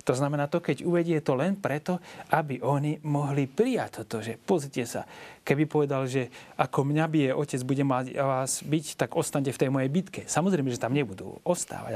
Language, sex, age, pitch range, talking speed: Slovak, male, 30-49, 120-150 Hz, 185 wpm